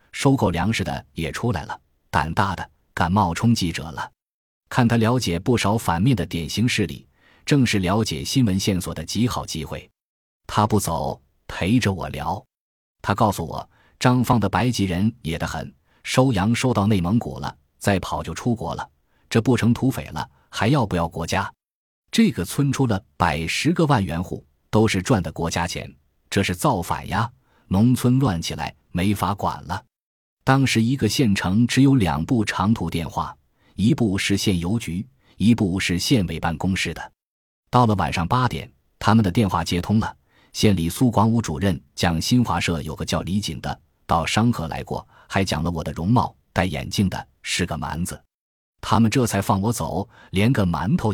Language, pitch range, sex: Chinese, 85-120 Hz, male